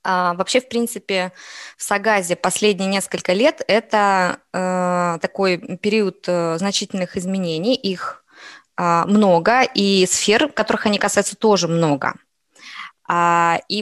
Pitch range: 185-230 Hz